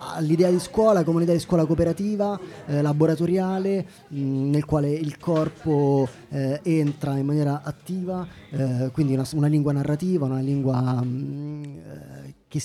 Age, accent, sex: 20-39, native, male